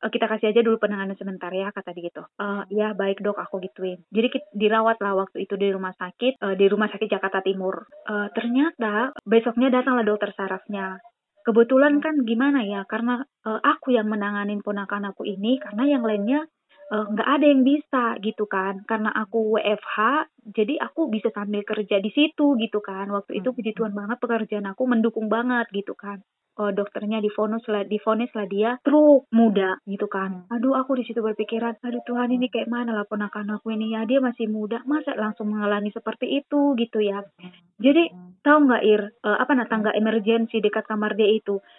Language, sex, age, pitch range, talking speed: Indonesian, female, 20-39, 205-265 Hz, 180 wpm